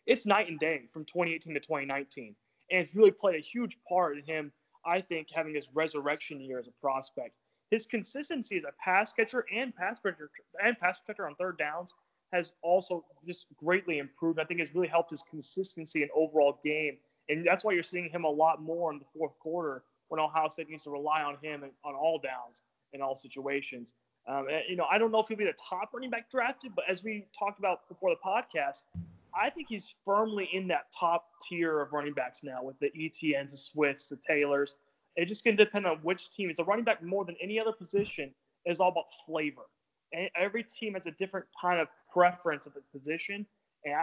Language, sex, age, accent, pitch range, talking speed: English, male, 30-49, American, 150-190 Hz, 215 wpm